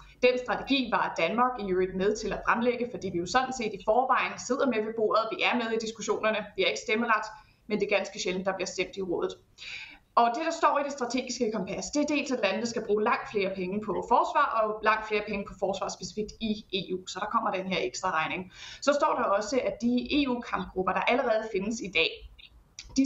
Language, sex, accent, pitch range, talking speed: Danish, female, native, 195-245 Hz, 230 wpm